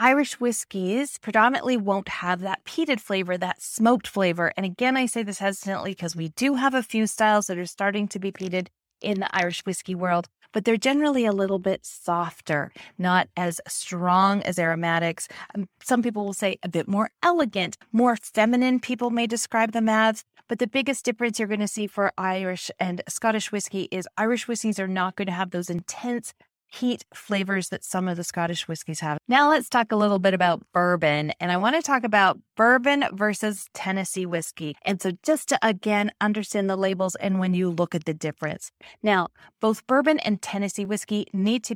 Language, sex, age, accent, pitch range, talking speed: English, female, 30-49, American, 180-230 Hz, 195 wpm